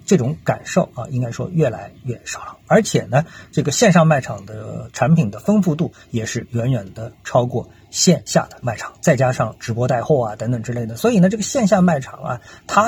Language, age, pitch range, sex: Chinese, 50-69, 120-175 Hz, male